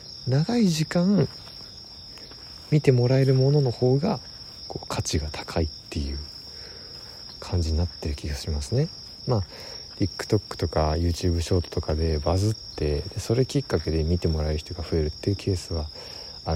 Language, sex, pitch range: Japanese, male, 85-125 Hz